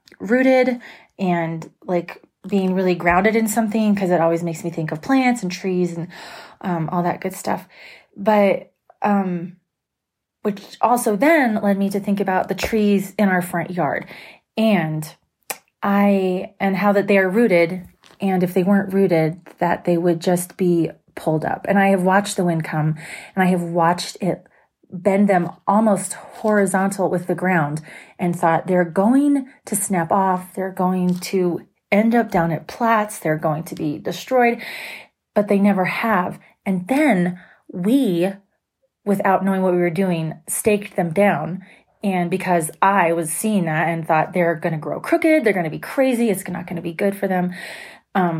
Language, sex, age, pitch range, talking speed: English, female, 30-49, 175-205 Hz, 175 wpm